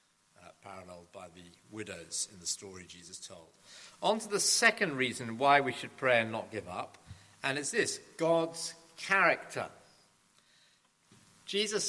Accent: British